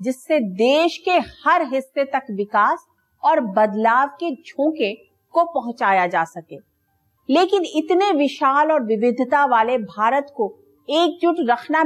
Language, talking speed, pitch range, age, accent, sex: English, 125 wpm, 235-310 Hz, 50-69, Indian, female